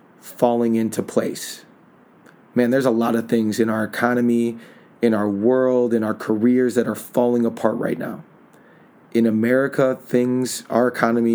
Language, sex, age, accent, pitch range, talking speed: English, male, 30-49, American, 115-130 Hz, 155 wpm